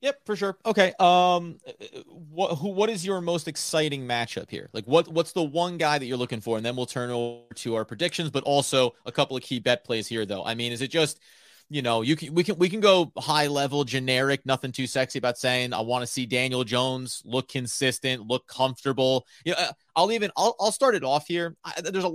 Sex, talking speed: male, 235 wpm